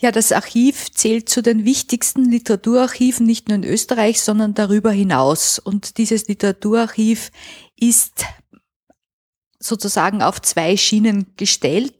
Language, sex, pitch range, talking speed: German, female, 195-225 Hz, 120 wpm